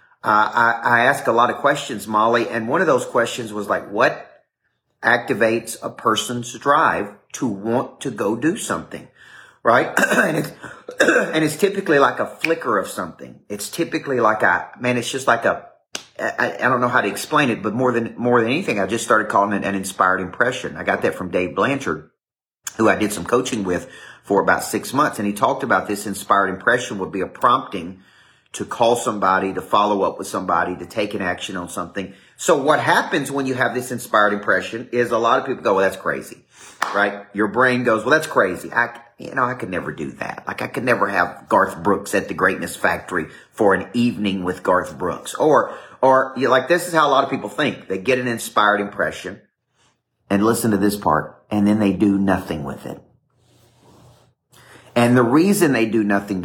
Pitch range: 100-125 Hz